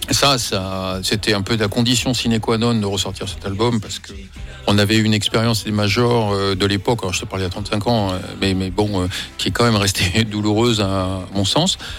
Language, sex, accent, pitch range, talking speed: French, male, French, 105-135 Hz, 210 wpm